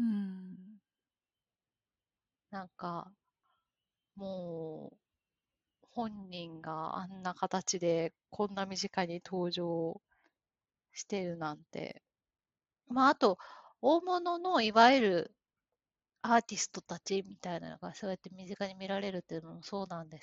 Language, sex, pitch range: Japanese, female, 170-225 Hz